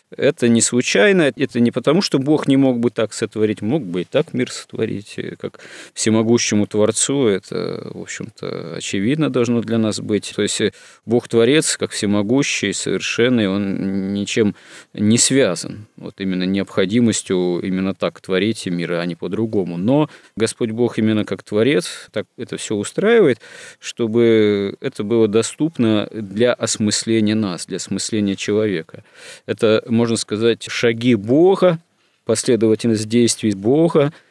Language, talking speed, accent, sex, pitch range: Russian, 140 wpm, native, male, 100-120 Hz